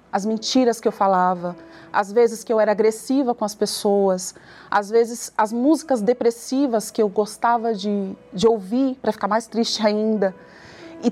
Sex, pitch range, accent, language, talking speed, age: female, 205-265 Hz, Brazilian, Portuguese, 165 wpm, 30-49